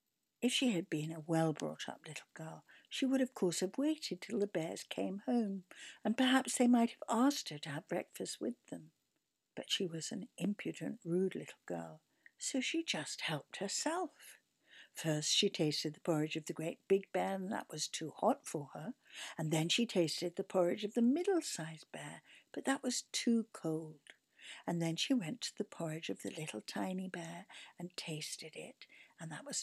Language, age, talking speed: English, 60-79, 190 wpm